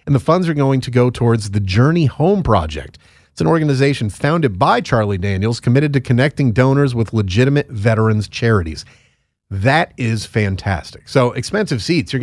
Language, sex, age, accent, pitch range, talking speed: English, male, 40-59, American, 105-130 Hz, 165 wpm